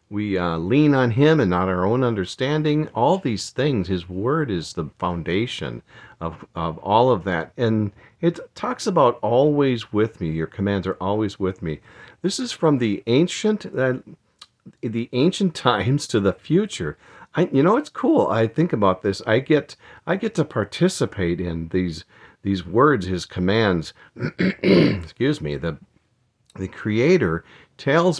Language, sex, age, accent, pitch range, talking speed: English, male, 50-69, American, 95-145 Hz, 160 wpm